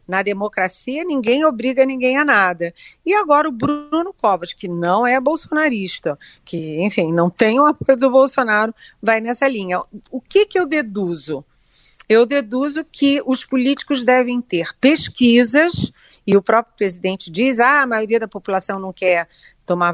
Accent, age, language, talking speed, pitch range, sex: Brazilian, 40-59, Portuguese, 160 wpm, 180-250 Hz, female